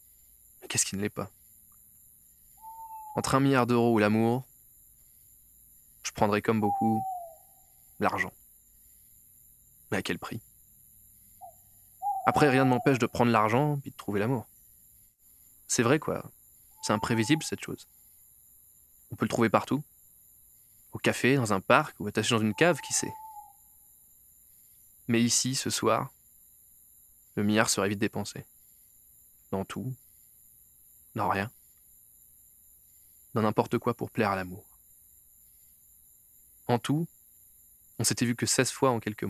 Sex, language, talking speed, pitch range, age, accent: male, French, 130 wpm, 105-135 Hz, 20-39, French